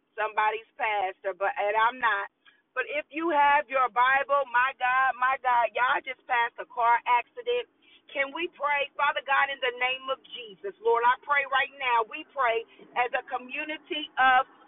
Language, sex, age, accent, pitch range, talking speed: English, female, 40-59, American, 255-300 Hz, 170 wpm